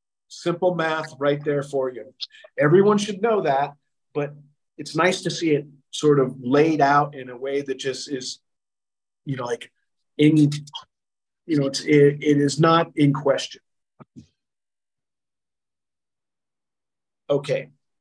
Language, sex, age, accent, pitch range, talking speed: English, male, 40-59, American, 135-160 Hz, 130 wpm